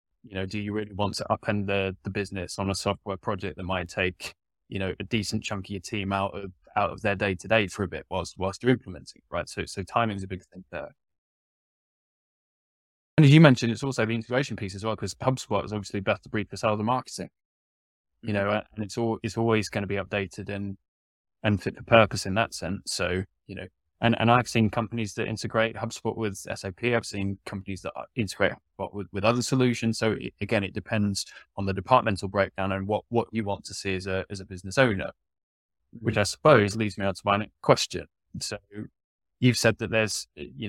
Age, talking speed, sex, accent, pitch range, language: 10-29, 220 wpm, male, British, 95-115 Hz, English